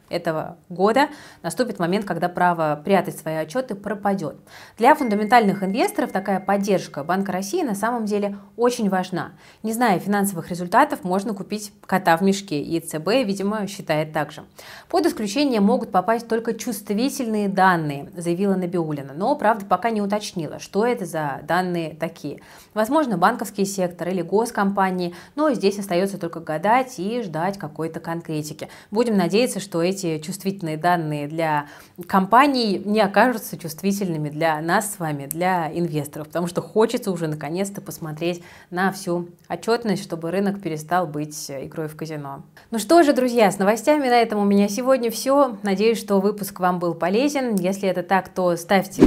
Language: Russian